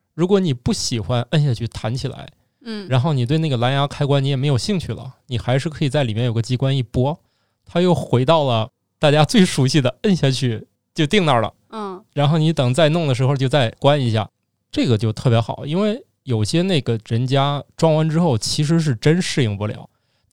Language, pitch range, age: Chinese, 120-160 Hz, 20-39